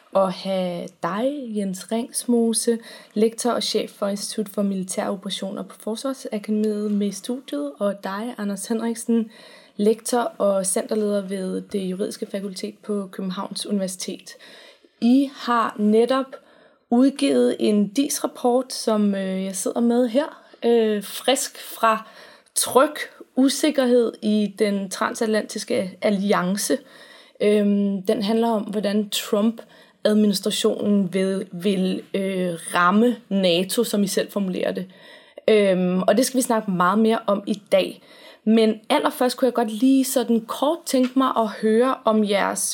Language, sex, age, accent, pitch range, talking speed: Danish, female, 20-39, native, 200-245 Hz, 130 wpm